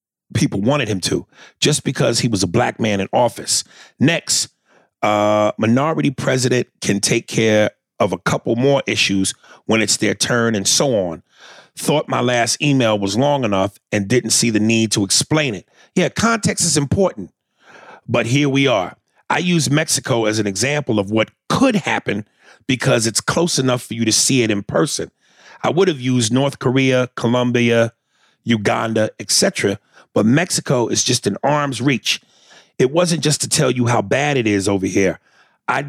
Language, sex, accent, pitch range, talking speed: English, male, American, 110-140 Hz, 175 wpm